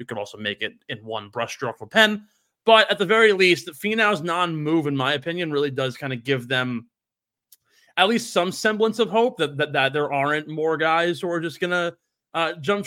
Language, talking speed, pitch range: English, 215 wpm, 135-175 Hz